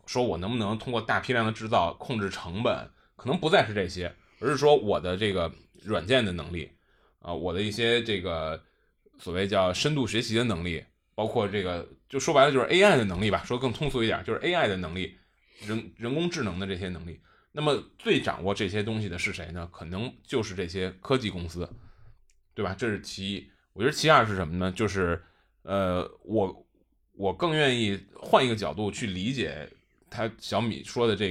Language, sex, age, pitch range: Chinese, male, 20-39, 90-120 Hz